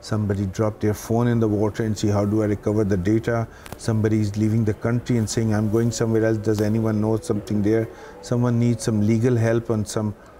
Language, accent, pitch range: Romanian, Indian, 105-130 Hz